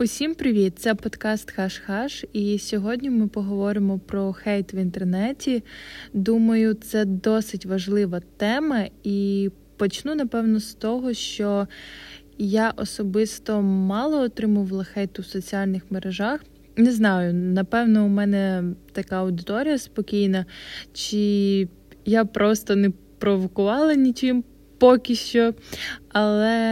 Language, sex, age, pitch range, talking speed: Ukrainian, female, 20-39, 195-225 Hz, 110 wpm